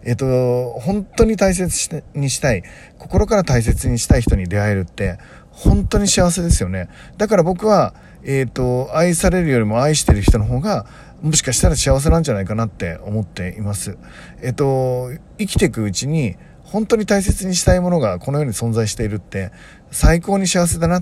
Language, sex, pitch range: Japanese, male, 105-160 Hz